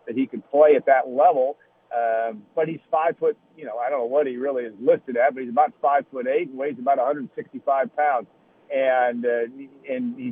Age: 50-69